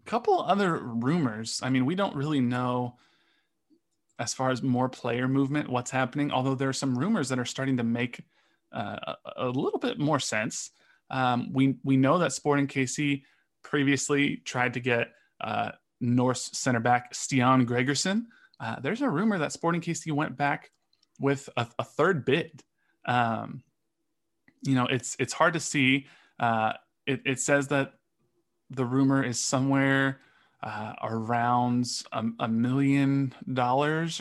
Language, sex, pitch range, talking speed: English, male, 125-145 Hz, 150 wpm